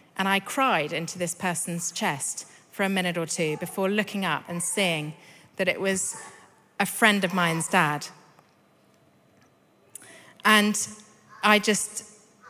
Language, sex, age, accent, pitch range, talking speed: English, female, 40-59, British, 155-190 Hz, 135 wpm